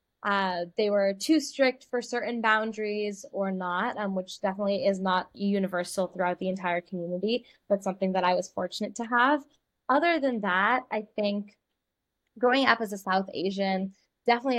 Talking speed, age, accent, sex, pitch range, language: 165 wpm, 10-29, American, female, 185-220 Hz, English